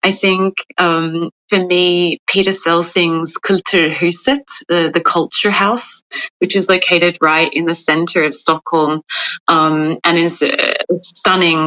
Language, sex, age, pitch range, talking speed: English, female, 30-49, 155-180 Hz, 135 wpm